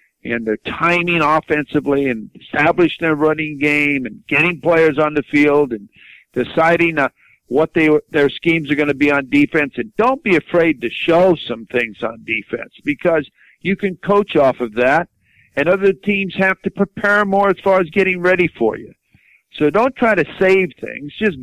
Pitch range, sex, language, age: 140-190 Hz, male, English, 50-69